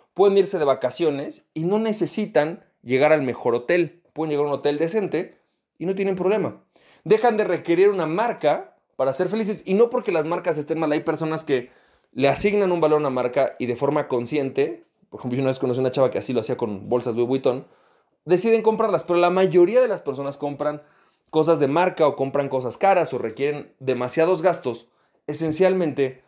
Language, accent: Spanish, Mexican